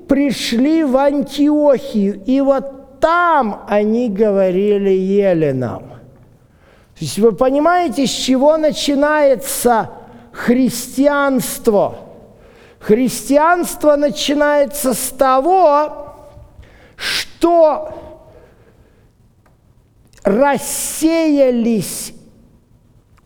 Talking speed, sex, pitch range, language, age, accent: 60 wpm, male, 200-275 Hz, Russian, 50-69, native